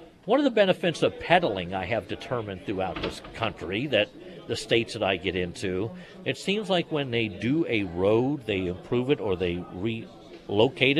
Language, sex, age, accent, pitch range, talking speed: English, male, 60-79, American, 105-155 Hz, 180 wpm